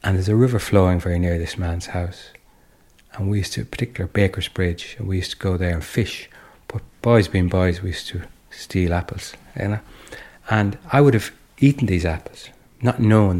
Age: 60-79